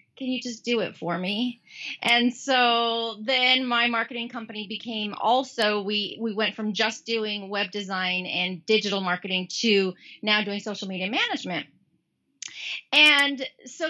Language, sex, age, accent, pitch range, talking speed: English, female, 30-49, American, 195-250 Hz, 145 wpm